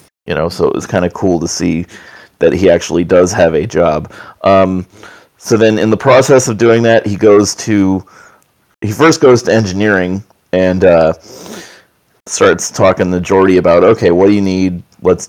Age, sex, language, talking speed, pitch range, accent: 30-49, male, English, 180 wpm, 95-120 Hz, American